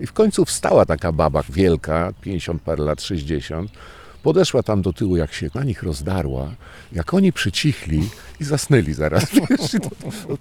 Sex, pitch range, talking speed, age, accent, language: male, 70-95 Hz, 175 wpm, 50-69, native, Polish